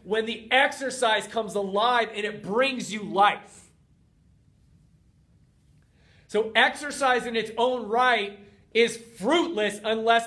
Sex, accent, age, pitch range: male, American, 30-49, 200-240 Hz